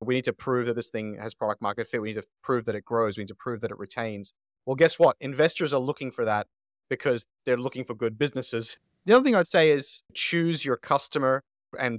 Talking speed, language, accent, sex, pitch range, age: 245 wpm, English, Australian, male, 110-140 Hz, 30-49